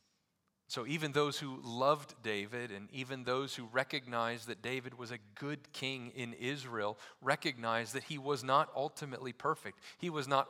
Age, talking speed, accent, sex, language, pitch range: 40-59, 165 wpm, American, male, English, 125-160 Hz